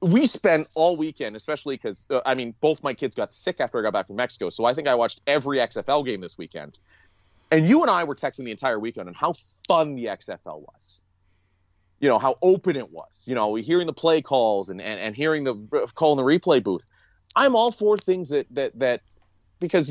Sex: male